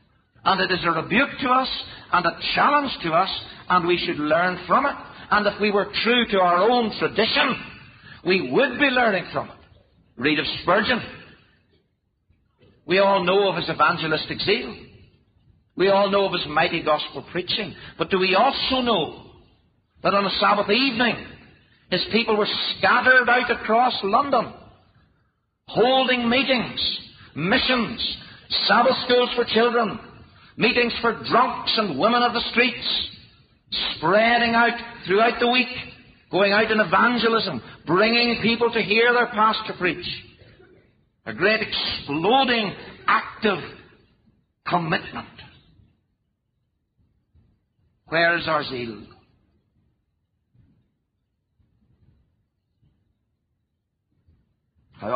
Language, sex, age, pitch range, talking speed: English, male, 60-79, 150-235 Hz, 120 wpm